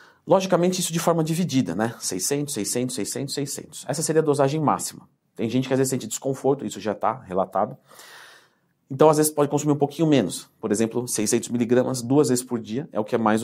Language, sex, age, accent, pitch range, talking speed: Portuguese, male, 40-59, Brazilian, 120-165 Hz, 210 wpm